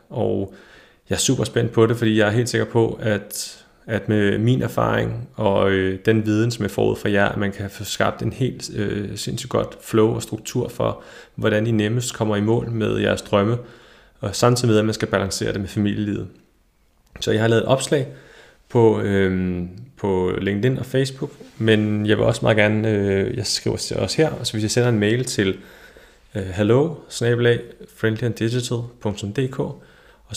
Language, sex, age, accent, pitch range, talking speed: Danish, male, 30-49, native, 100-120 Hz, 190 wpm